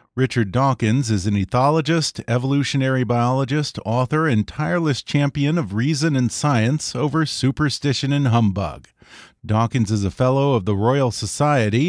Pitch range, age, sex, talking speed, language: 115-145 Hz, 40-59, male, 135 wpm, English